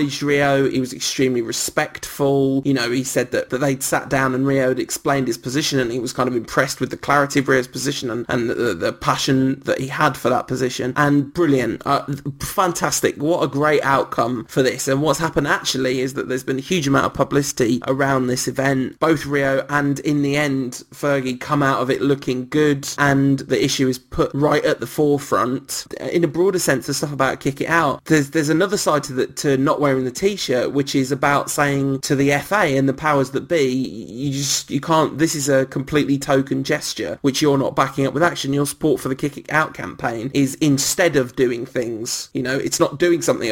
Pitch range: 135-150 Hz